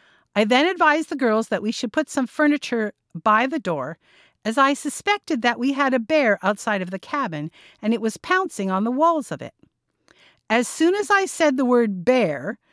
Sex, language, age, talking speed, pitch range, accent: female, English, 50-69, 205 wpm, 205-305 Hz, American